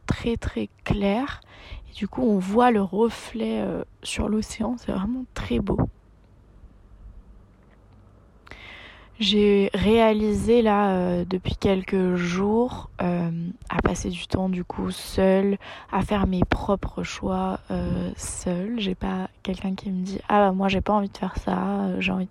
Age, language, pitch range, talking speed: 20-39, French, 170-210 Hz, 150 wpm